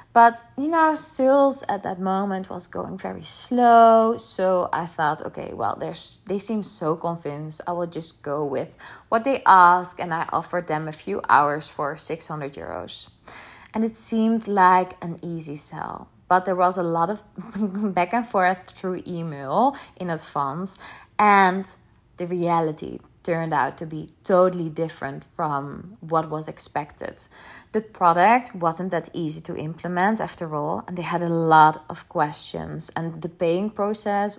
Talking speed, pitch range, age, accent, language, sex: 160 wpm, 165-220 Hz, 20-39, Dutch, Dutch, female